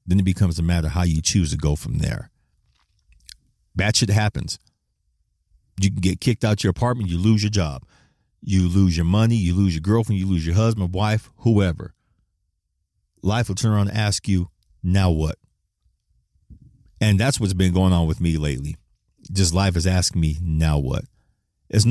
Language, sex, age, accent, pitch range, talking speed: English, male, 40-59, American, 85-110 Hz, 185 wpm